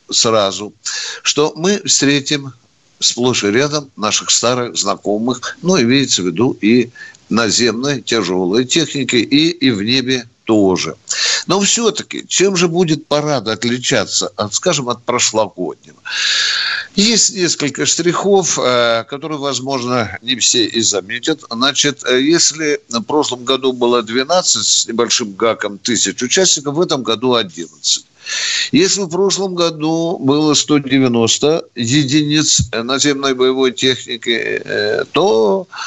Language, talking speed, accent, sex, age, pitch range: Russian, 120 wpm, native, male, 60-79, 120-165 Hz